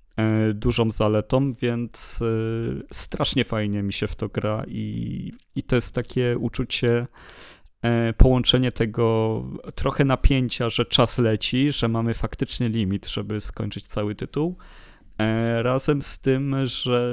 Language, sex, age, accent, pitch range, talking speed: Polish, male, 30-49, native, 110-125 Hz, 125 wpm